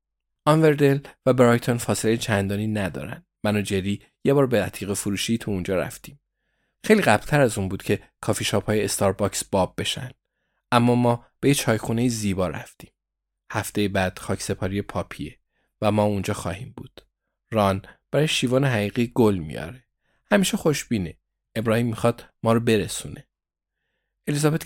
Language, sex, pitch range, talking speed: Persian, male, 100-120 Hz, 145 wpm